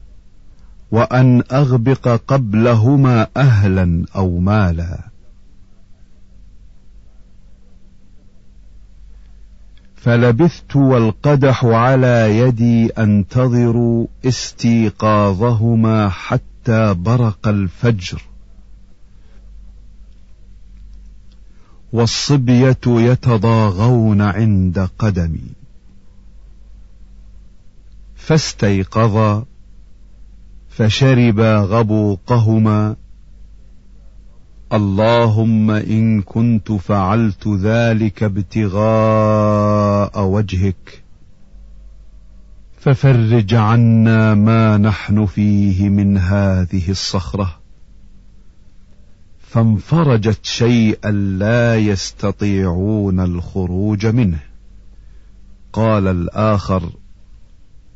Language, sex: Arabic, male